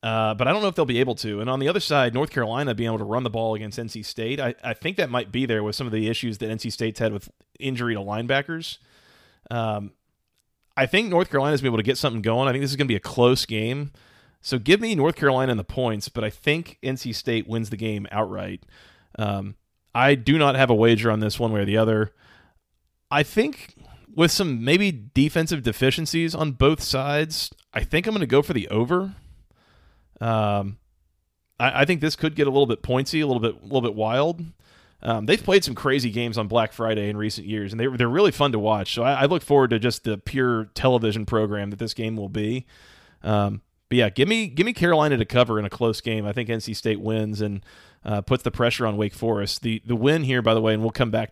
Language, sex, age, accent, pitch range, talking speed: English, male, 30-49, American, 110-135 Hz, 245 wpm